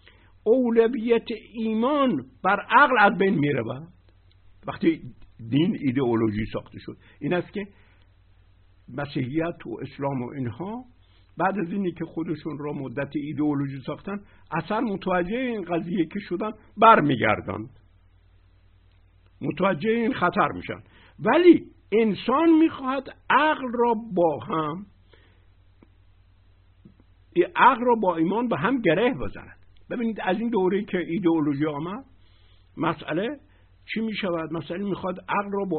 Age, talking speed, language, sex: 60-79, 120 wpm, Persian, male